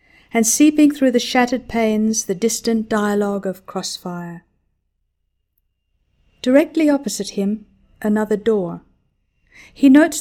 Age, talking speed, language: 50-69, 105 wpm, English